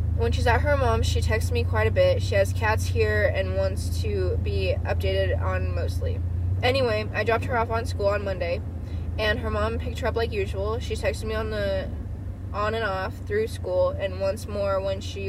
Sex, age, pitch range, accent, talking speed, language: female, 10-29, 90-95 Hz, American, 210 wpm, English